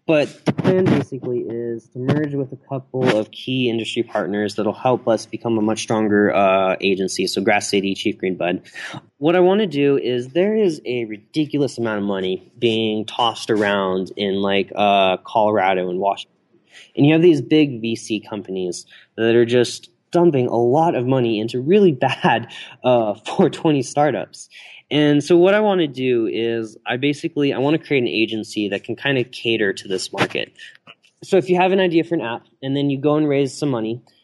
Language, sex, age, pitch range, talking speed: English, male, 20-39, 110-145 Hz, 200 wpm